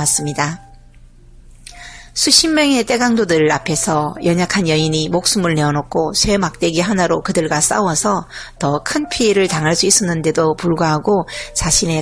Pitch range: 155-205 Hz